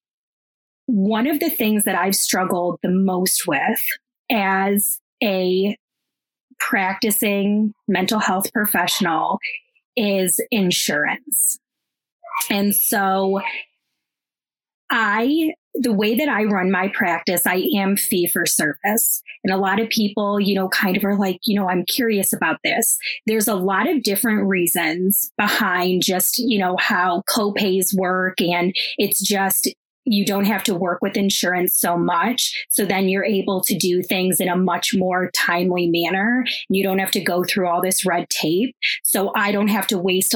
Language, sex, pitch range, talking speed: English, female, 185-220 Hz, 155 wpm